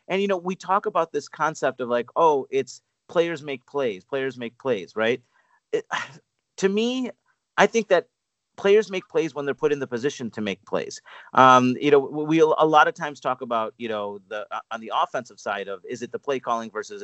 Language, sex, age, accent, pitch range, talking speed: English, male, 30-49, American, 115-160 Hz, 215 wpm